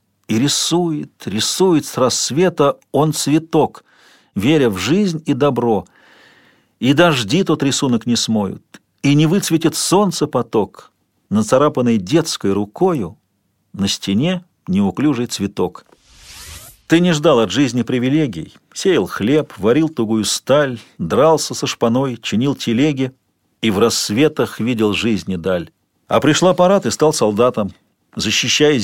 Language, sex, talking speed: Russian, male, 125 wpm